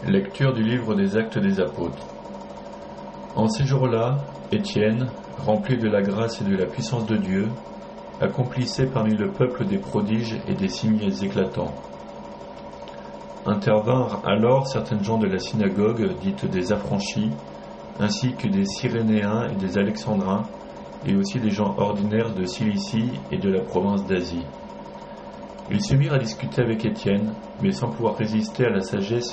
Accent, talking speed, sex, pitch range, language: French, 150 wpm, male, 100-130 Hz, French